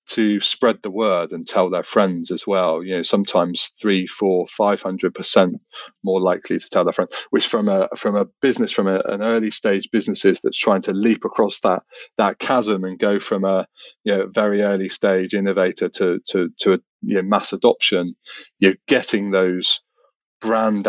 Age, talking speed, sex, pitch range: 30-49, 190 wpm, male, 95-110 Hz